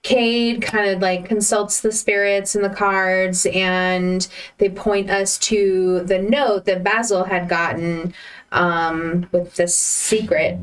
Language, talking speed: English, 140 wpm